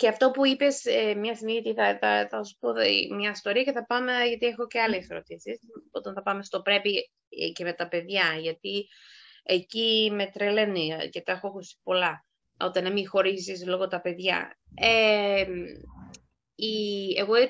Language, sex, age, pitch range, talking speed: Greek, female, 20-39, 185-235 Hz, 160 wpm